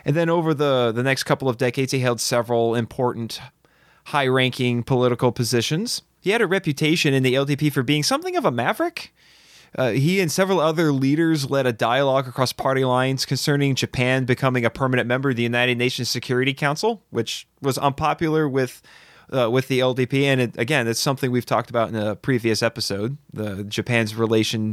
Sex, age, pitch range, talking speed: male, 20-39, 125-160 Hz, 185 wpm